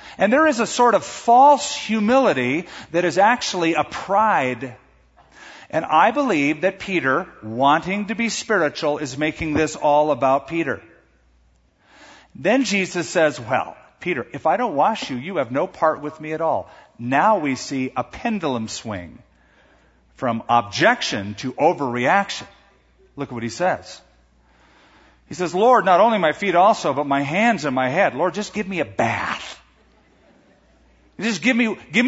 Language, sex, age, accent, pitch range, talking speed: English, male, 50-69, American, 115-195 Hz, 160 wpm